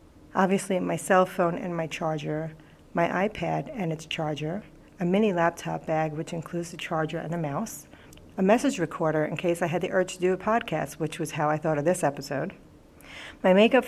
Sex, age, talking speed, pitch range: female, 40-59, 200 wpm, 155-180 Hz